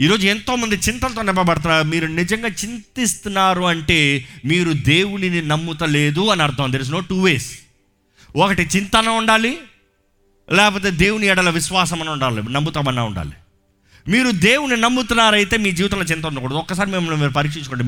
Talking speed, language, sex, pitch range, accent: 130 wpm, Telugu, male, 140-215 Hz, native